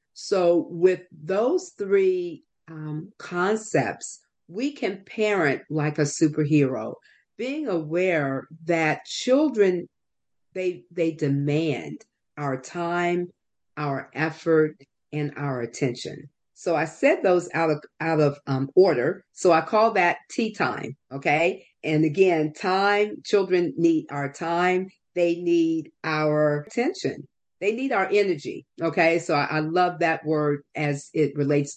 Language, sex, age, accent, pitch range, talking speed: English, female, 50-69, American, 150-195 Hz, 125 wpm